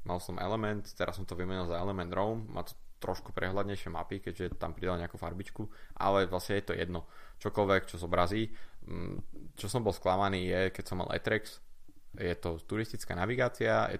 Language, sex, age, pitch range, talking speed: Slovak, male, 20-39, 90-100 Hz, 180 wpm